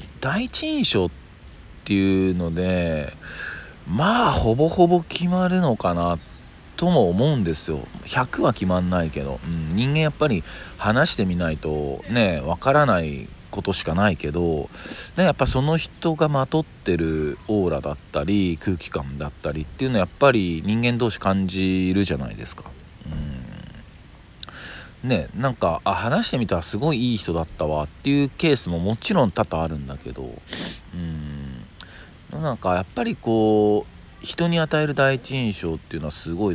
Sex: male